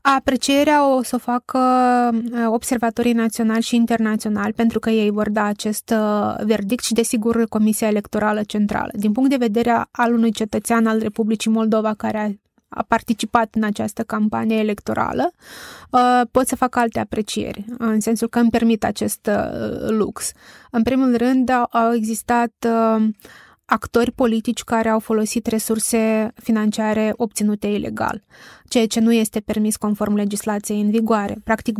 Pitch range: 215-230 Hz